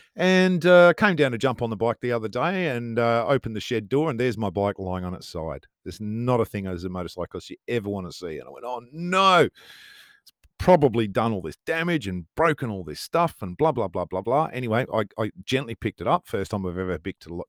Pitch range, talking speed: 95-135 Hz, 245 wpm